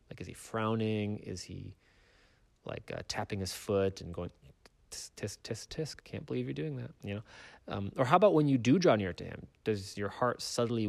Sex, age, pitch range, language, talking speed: male, 30-49, 95-120 Hz, English, 205 wpm